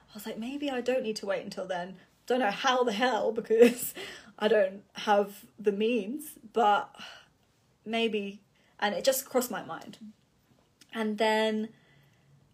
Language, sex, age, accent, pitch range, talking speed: English, female, 20-39, British, 200-235 Hz, 155 wpm